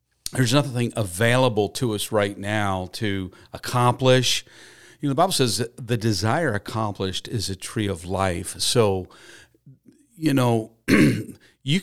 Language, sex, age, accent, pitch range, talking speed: English, male, 50-69, American, 105-125 Hz, 135 wpm